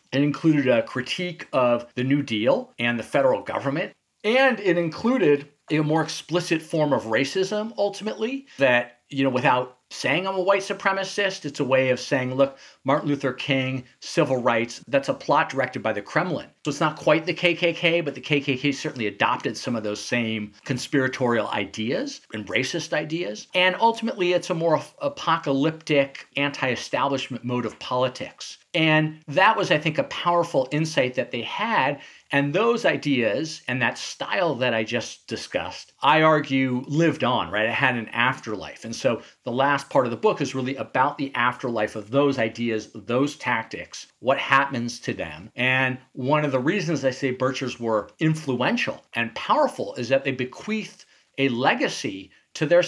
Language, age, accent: English, 40-59, American